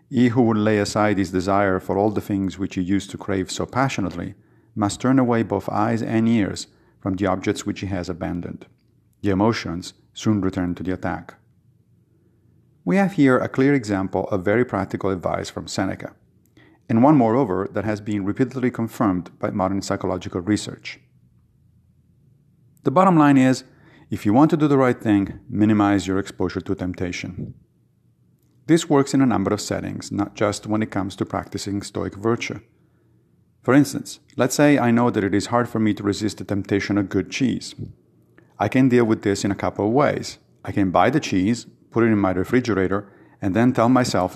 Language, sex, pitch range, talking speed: English, male, 95-120 Hz, 190 wpm